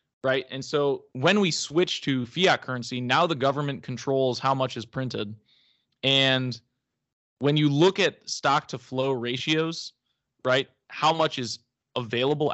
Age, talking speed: 20-39, 150 wpm